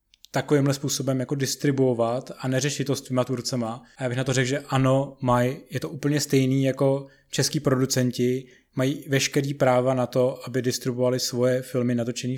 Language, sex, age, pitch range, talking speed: Czech, male, 20-39, 120-135 Hz, 165 wpm